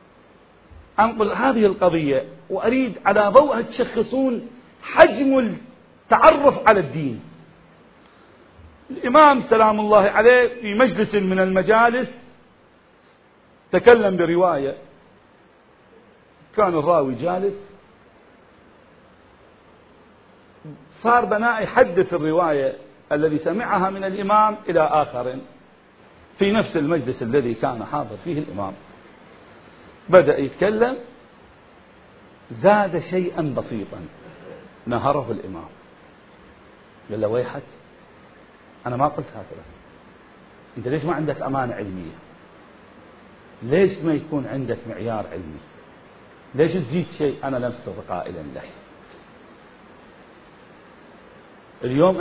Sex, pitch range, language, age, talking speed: male, 145-215 Hz, Arabic, 50-69, 85 wpm